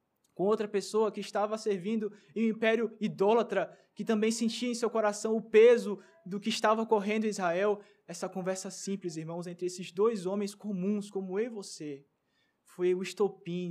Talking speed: 175 wpm